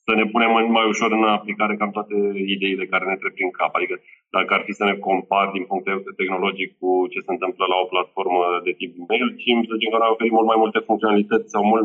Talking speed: 240 wpm